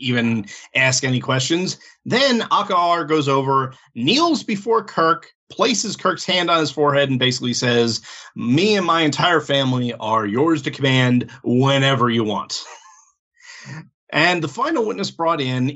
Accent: American